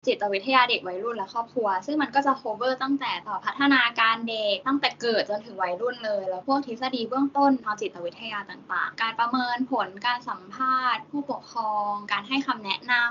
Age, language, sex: 10-29, Thai, female